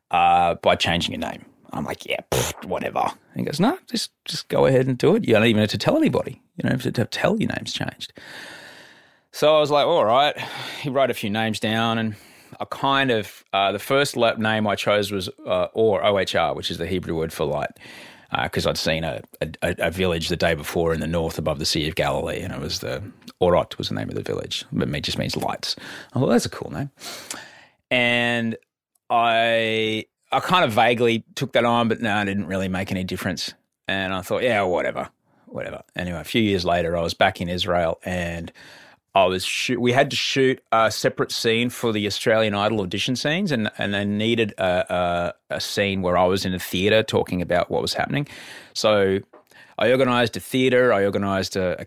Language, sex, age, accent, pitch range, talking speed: English, male, 30-49, Australian, 90-115 Hz, 220 wpm